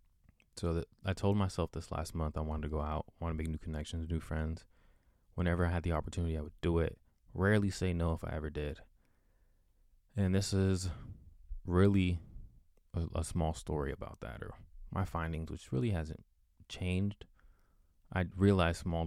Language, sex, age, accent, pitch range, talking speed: English, male, 20-39, American, 80-90 Hz, 175 wpm